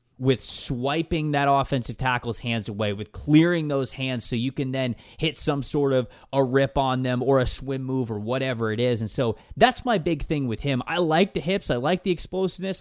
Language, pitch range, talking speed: English, 115-155 Hz, 220 wpm